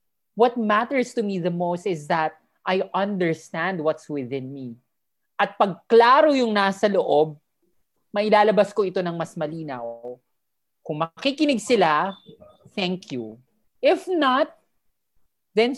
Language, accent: Filipino, native